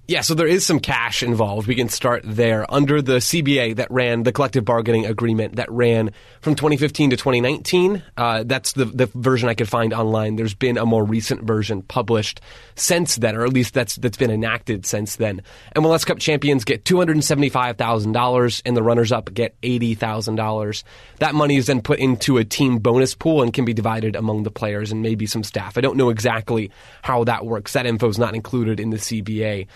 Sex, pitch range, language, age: male, 115-135 Hz, English, 20-39